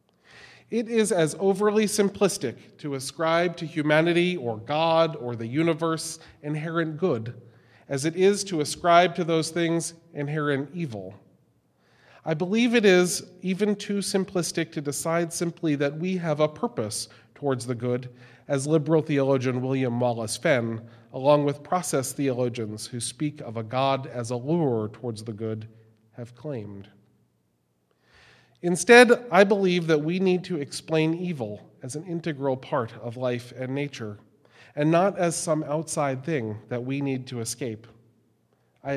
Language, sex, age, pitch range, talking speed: English, male, 40-59, 120-165 Hz, 150 wpm